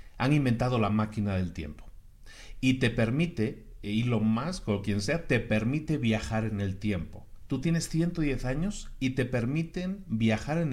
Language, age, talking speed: Spanish, 40-59, 170 wpm